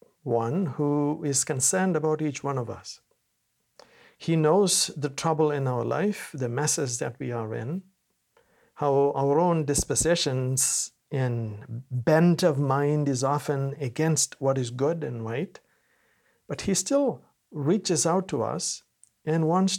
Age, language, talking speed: 60-79, English, 145 wpm